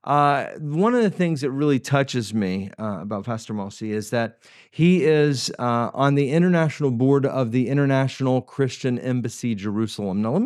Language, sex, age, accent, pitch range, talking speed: English, male, 40-59, American, 125-165 Hz, 170 wpm